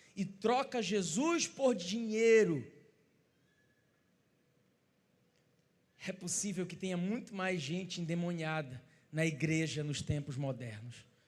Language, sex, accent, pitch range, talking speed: Portuguese, male, Brazilian, 185-285 Hz, 95 wpm